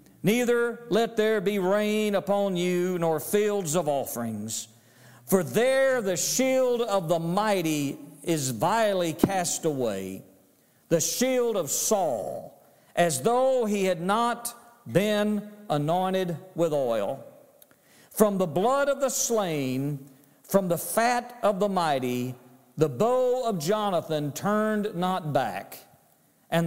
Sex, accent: male, American